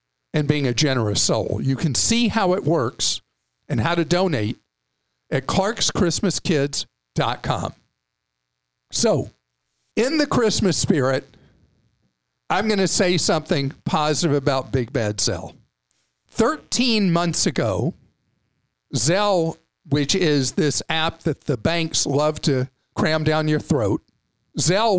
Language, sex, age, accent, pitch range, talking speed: English, male, 50-69, American, 130-185 Hz, 120 wpm